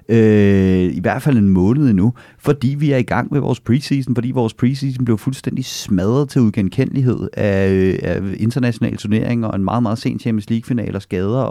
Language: Danish